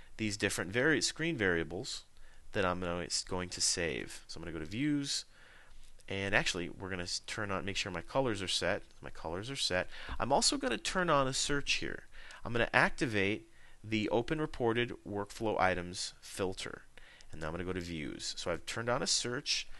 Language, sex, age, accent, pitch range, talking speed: English, male, 40-59, American, 90-125 Hz, 210 wpm